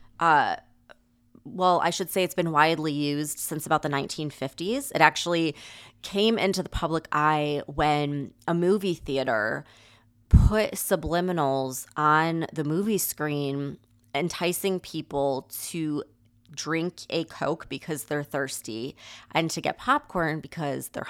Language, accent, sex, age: English, American, female, 20-39